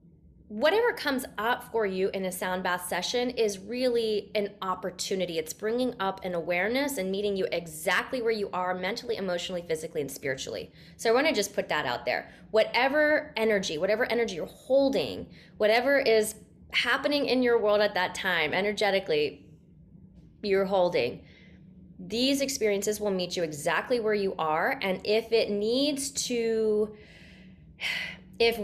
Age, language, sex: 20-39, English, female